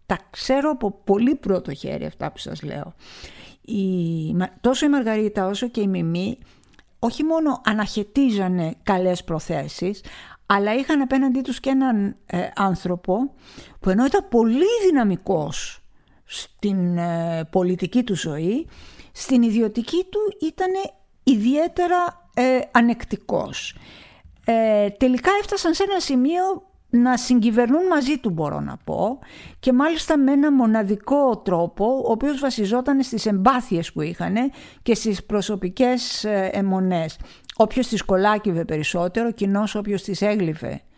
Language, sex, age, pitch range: Greek, female, 50-69, 190-260 Hz